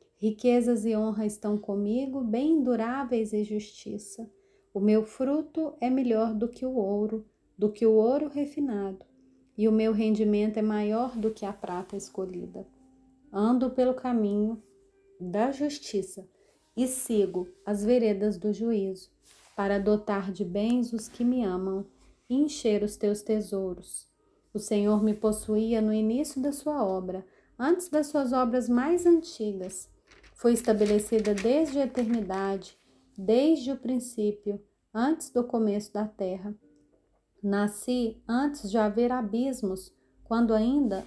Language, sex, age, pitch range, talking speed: Portuguese, female, 30-49, 205-255 Hz, 135 wpm